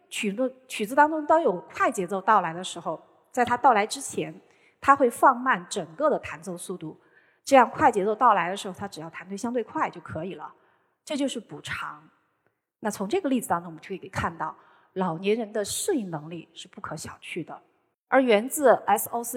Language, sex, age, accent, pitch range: Chinese, female, 30-49, native, 185-260 Hz